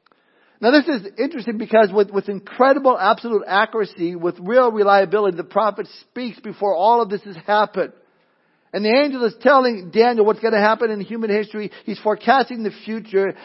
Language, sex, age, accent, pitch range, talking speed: English, male, 50-69, American, 180-220 Hz, 175 wpm